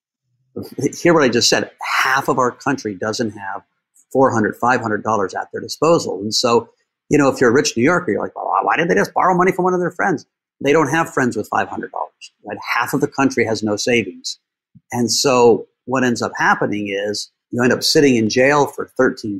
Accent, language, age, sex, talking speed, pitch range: American, English, 50-69, male, 215 wpm, 110-140 Hz